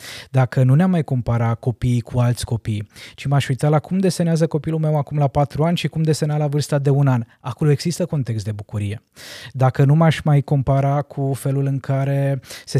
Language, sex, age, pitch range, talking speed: Romanian, male, 20-39, 125-150 Hz, 205 wpm